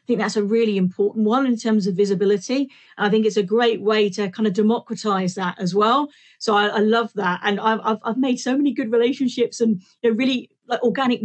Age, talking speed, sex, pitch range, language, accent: 40-59, 230 wpm, female, 195-220 Hz, English, British